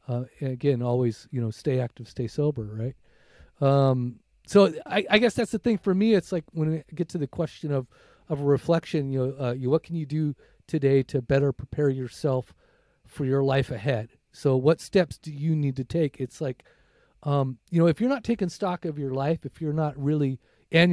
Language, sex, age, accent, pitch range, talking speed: English, male, 40-59, American, 135-160 Hz, 215 wpm